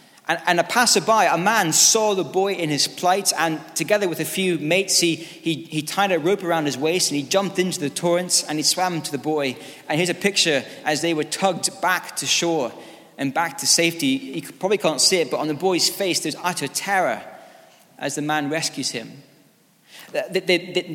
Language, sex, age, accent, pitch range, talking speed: English, male, 20-39, British, 150-185 Hz, 210 wpm